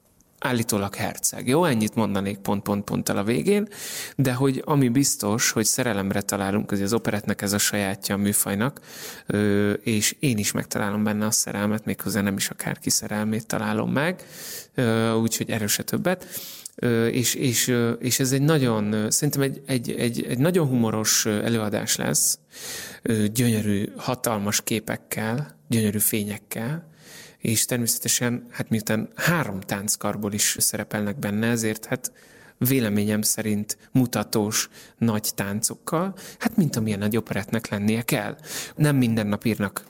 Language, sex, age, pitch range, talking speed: Hungarian, male, 30-49, 105-120 Hz, 130 wpm